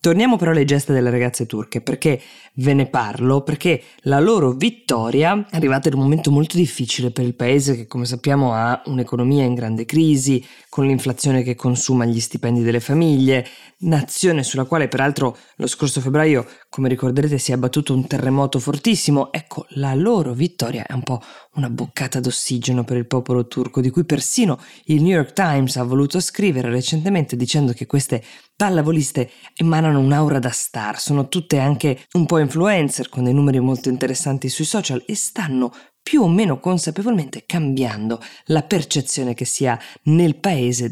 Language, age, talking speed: Italian, 20-39, 170 wpm